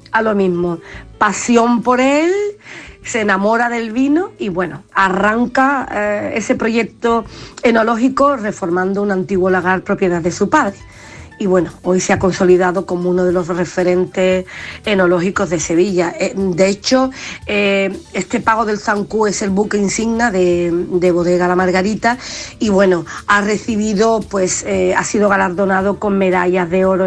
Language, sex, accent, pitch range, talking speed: Spanish, female, Spanish, 185-225 Hz, 155 wpm